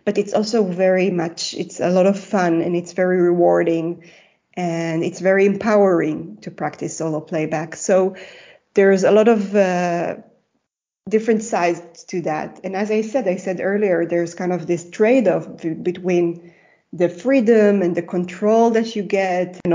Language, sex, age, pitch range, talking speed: English, female, 20-39, 170-200 Hz, 165 wpm